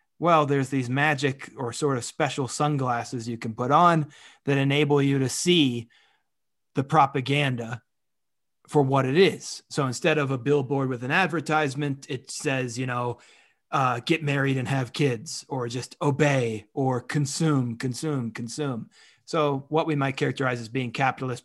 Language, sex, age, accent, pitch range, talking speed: English, male, 30-49, American, 125-145 Hz, 160 wpm